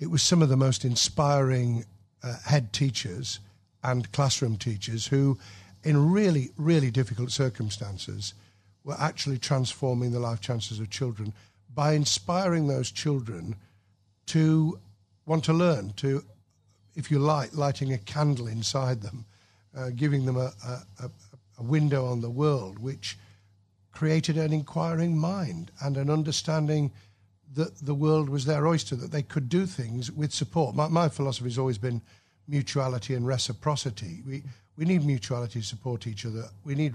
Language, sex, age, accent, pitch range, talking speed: English, male, 60-79, British, 110-145 Hz, 155 wpm